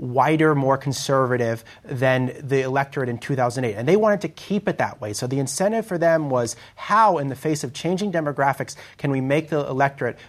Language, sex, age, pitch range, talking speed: English, male, 30-49, 120-165 Hz, 200 wpm